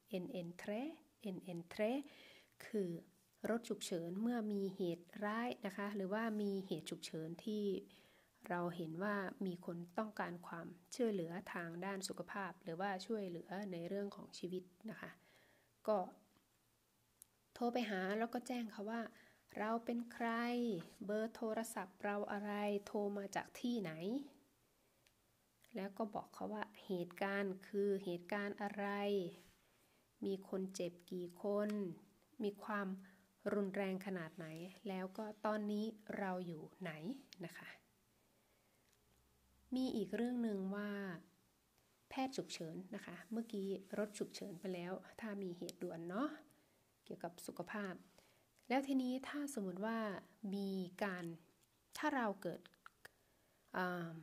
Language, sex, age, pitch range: Thai, female, 20-39, 180-215 Hz